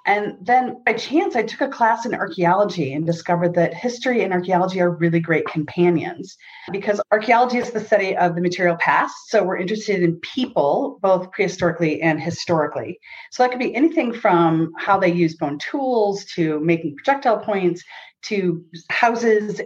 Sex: female